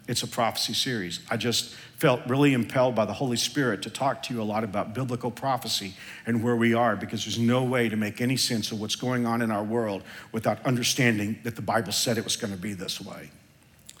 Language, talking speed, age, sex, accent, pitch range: English, 230 wpm, 50-69, male, American, 115-135 Hz